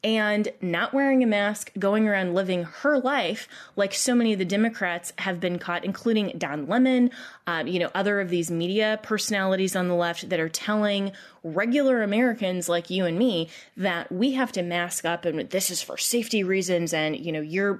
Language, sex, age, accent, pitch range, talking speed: English, female, 20-39, American, 170-215 Hz, 195 wpm